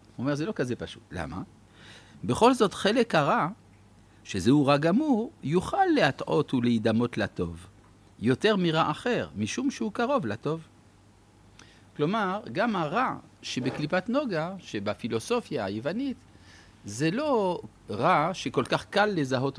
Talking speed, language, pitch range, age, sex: 120 wpm, Hebrew, 105-170 Hz, 50-69, male